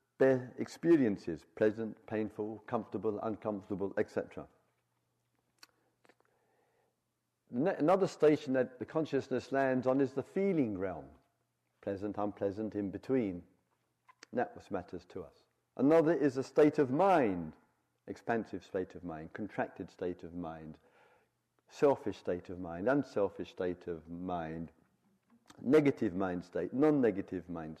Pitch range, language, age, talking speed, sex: 90-145 Hz, English, 50-69, 120 wpm, male